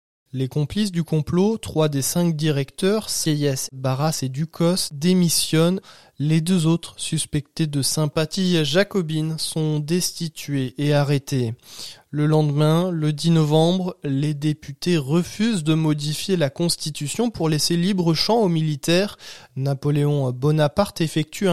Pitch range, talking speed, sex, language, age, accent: 145-170 Hz, 125 wpm, male, French, 20-39, French